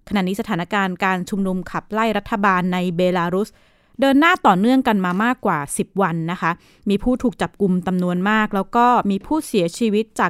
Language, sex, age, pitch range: Thai, female, 20-39, 185-230 Hz